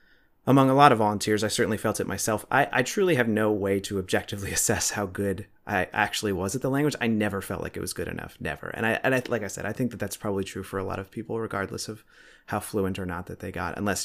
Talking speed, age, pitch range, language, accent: 275 wpm, 30-49, 100-120 Hz, English, American